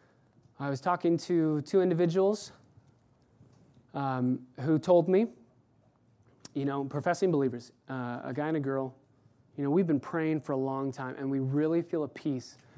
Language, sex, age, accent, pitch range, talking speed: English, male, 20-39, American, 130-175 Hz, 165 wpm